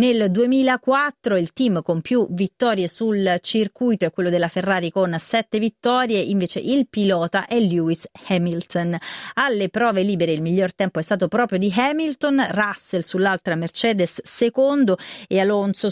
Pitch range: 180-225 Hz